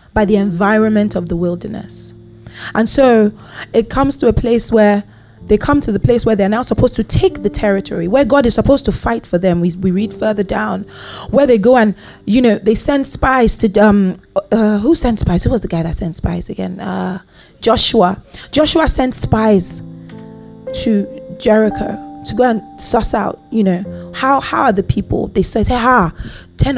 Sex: female